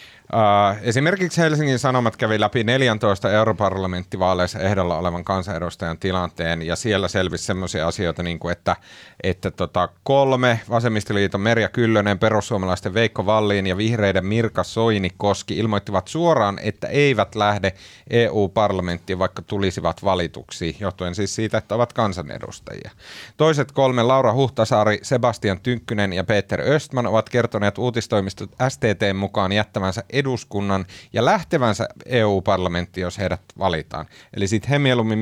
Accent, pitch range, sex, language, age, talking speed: native, 95-125 Hz, male, Finnish, 30-49, 125 wpm